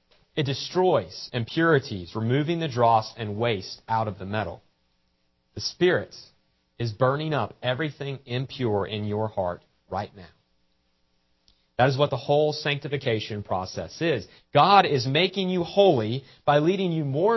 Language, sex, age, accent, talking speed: English, male, 40-59, American, 140 wpm